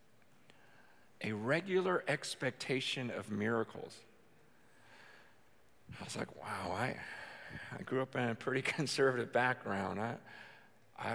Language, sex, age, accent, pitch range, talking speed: English, male, 50-69, American, 125-200 Hz, 110 wpm